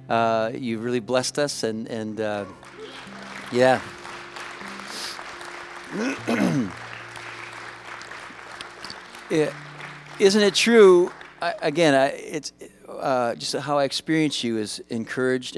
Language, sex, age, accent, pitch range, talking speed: English, male, 50-69, American, 100-140 Hz, 100 wpm